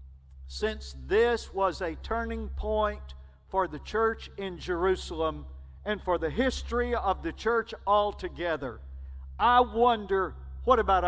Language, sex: English, male